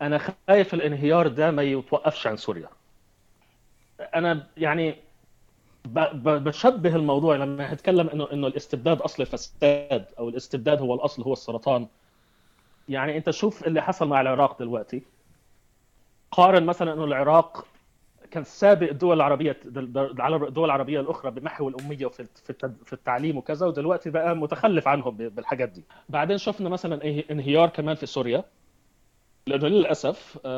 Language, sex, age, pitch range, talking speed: Arabic, male, 30-49, 135-175 Hz, 120 wpm